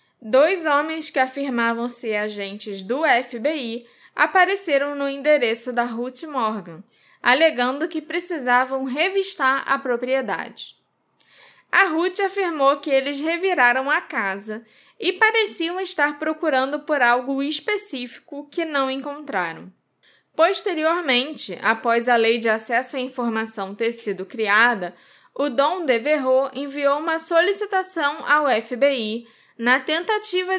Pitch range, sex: 225-315 Hz, female